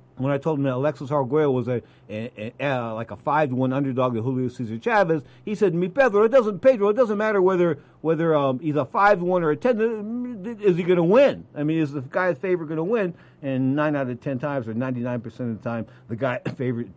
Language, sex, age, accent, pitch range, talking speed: English, male, 50-69, American, 125-165 Hz, 260 wpm